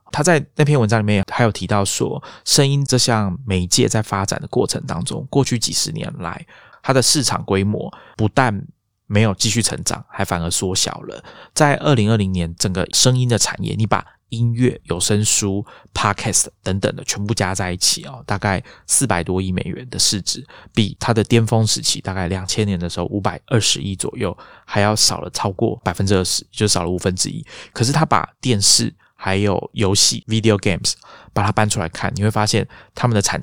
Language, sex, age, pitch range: Chinese, male, 20-39, 95-120 Hz